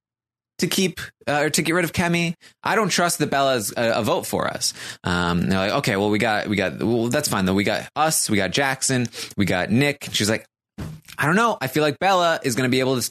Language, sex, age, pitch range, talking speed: English, male, 20-39, 105-155 Hz, 260 wpm